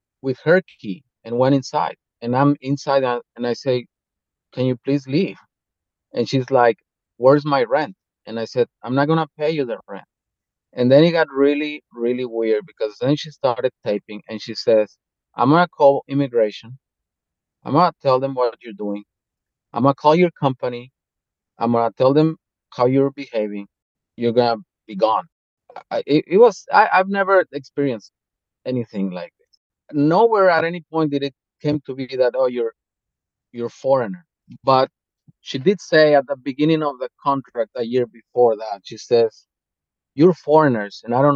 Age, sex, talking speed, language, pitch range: 30-49, male, 180 wpm, English, 115-145 Hz